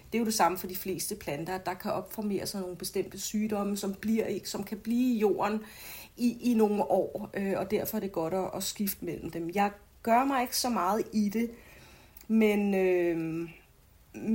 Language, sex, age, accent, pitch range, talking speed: Danish, female, 30-49, native, 175-210 Hz, 200 wpm